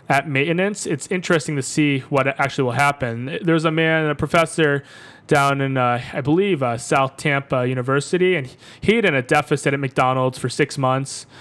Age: 20-39